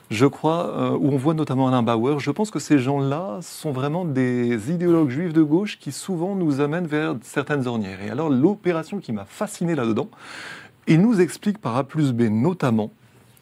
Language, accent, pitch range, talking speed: French, French, 125-170 Hz, 190 wpm